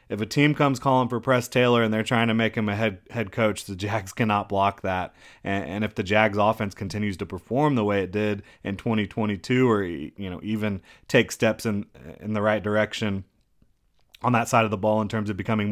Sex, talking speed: male, 225 wpm